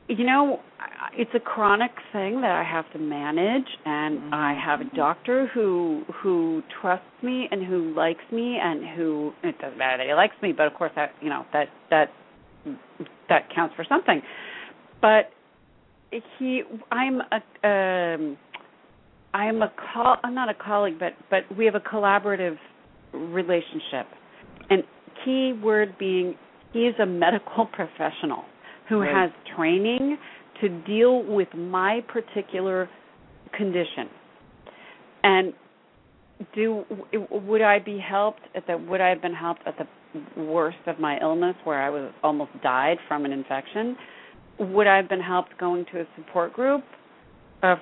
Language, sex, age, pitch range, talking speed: English, female, 40-59, 175-235 Hz, 155 wpm